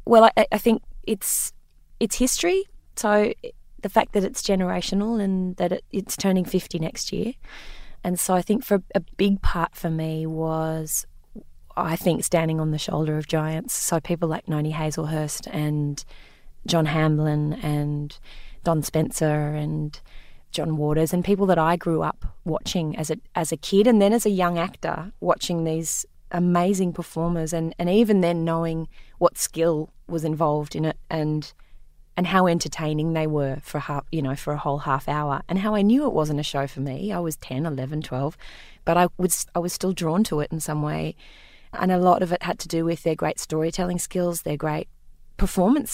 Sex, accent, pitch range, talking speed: female, Australian, 155-185 Hz, 190 wpm